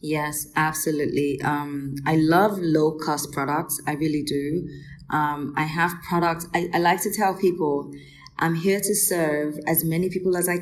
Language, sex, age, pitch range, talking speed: English, female, 20-39, 150-175 Hz, 165 wpm